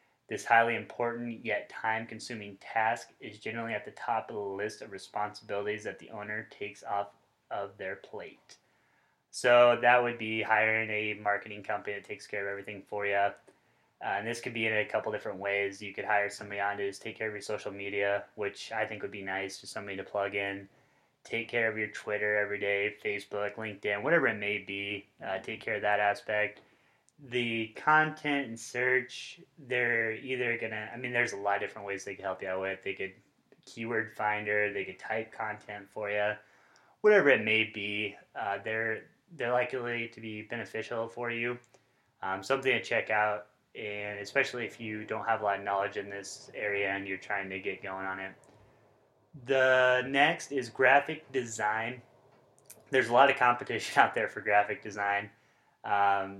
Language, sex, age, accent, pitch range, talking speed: English, male, 20-39, American, 100-120 Hz, 190 wpm